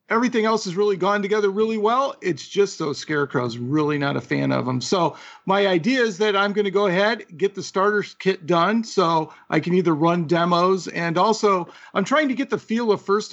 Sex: male